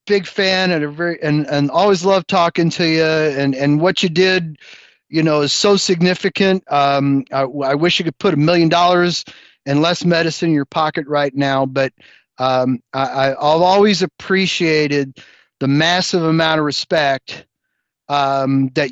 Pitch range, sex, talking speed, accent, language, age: 135-170 Hz, male, 170 wpm, American, English, 40-59